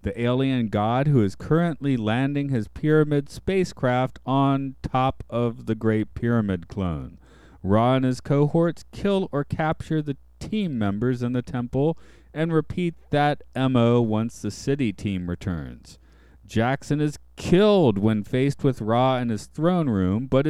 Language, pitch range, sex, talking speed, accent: English, 100-140 Hz, male, 150 wpm, American